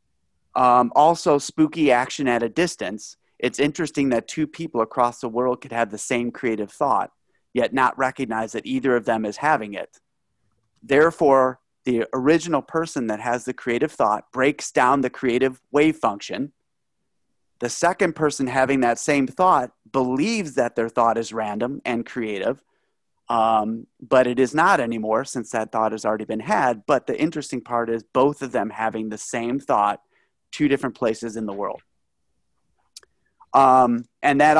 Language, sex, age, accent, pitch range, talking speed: English, male, 30-49, American, 115-135 Hz, 165 wpm